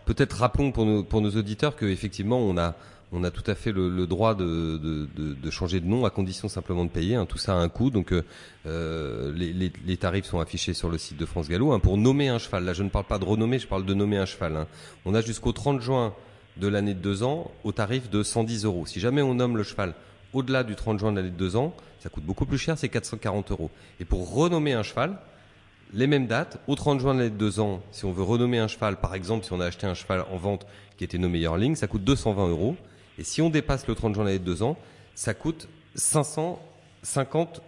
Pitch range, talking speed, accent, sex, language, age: 90-115 Hz, 260 wpm, French, male, French, 30-49